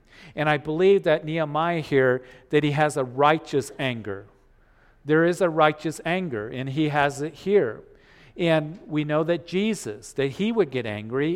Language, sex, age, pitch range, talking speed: English, male, 50-69, 135-165 Hz, 170 wpm